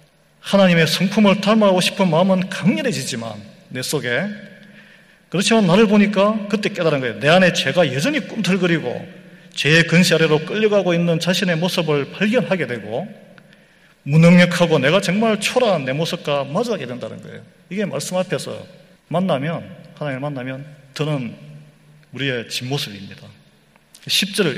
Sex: male